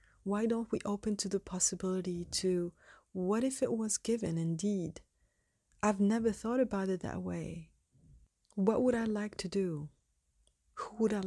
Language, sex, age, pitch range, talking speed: English, female, 30-49, 185-215 Hz, 160 wpm